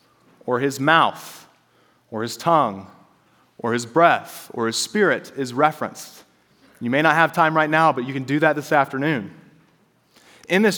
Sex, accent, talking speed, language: male, American, 165 wpm, English